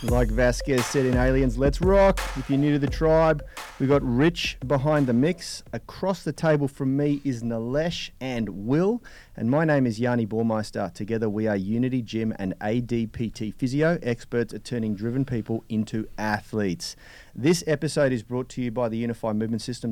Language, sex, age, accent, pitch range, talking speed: English, male, 30-49, Australian, 110-135 Hz, 180 wpm